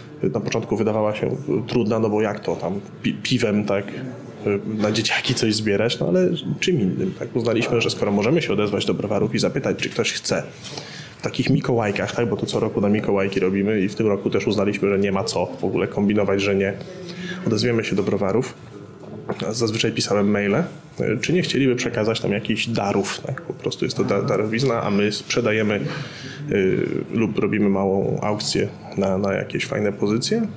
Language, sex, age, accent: Polish, male, 20-39, native